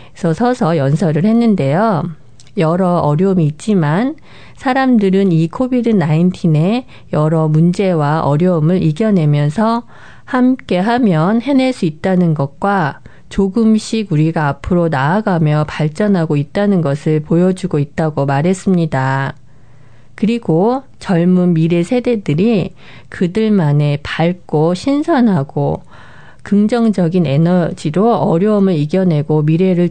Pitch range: 155-210 Hz